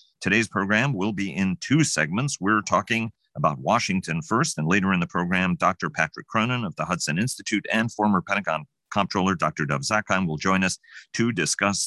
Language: English